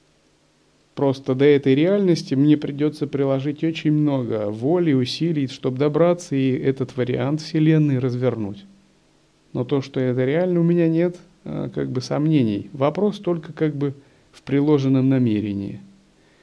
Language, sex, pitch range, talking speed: Russian, male, 120-150 Hz, 130 wpm